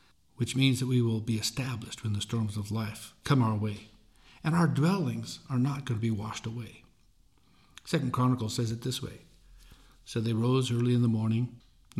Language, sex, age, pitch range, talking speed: English, male, 60-79, 115-140 Hz, 195 wpm